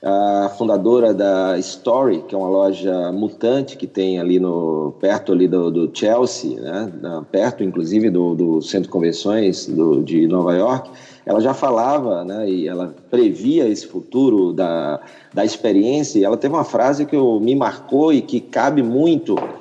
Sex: male